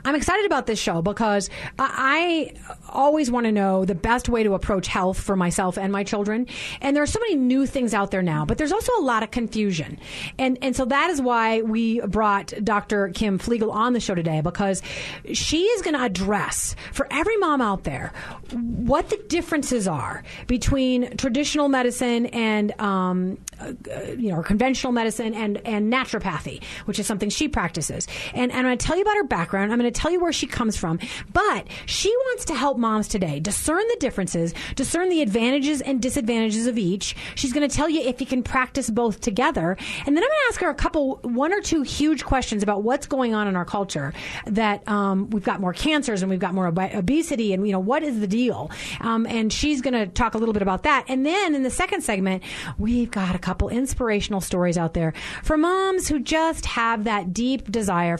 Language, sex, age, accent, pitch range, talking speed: English, female, 30-49, American, 200-275 Hz, 210 wpm